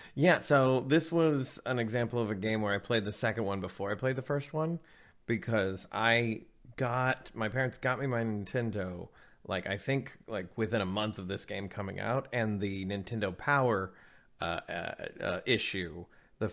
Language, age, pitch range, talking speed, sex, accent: English, 30-49, 100-125 Hz, 185 wpm, male, American